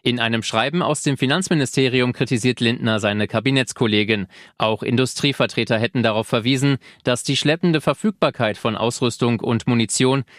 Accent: German